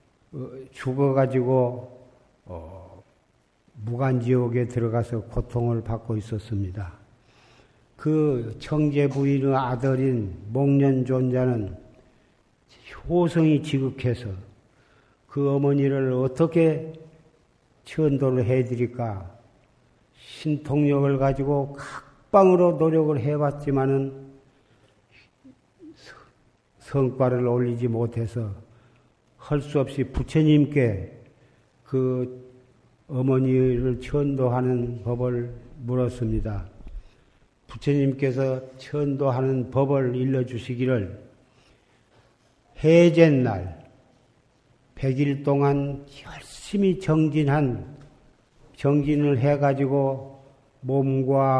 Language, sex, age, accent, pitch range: Korean, male, 50-69, native, 120-140 Hz